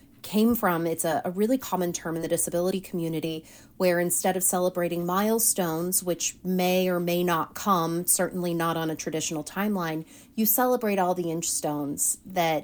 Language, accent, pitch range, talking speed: English, American, 165-200 Hz, 170 wpm